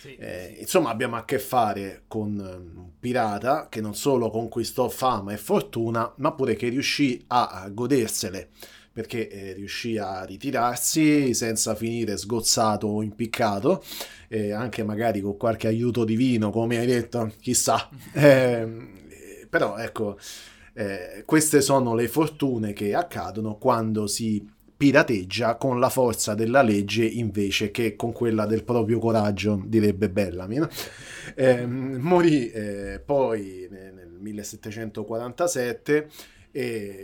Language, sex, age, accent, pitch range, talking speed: Italian, male, 30-49, native, 105-125 Hz, 125 wpm